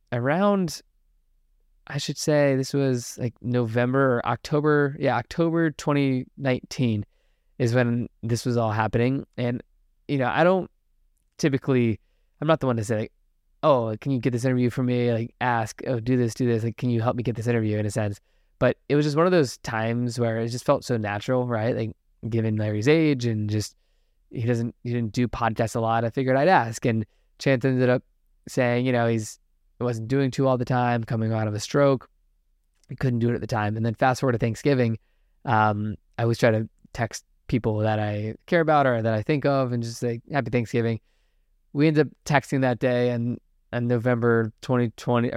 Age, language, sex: 20-39, English, male